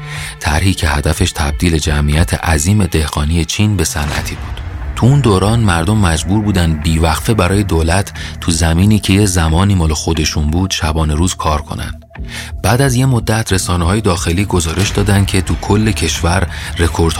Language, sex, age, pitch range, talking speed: Persian, male, 30-49, 80-100 Hz, 160 wpm